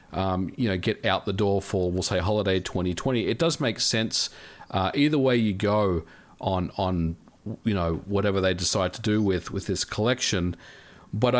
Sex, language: male, English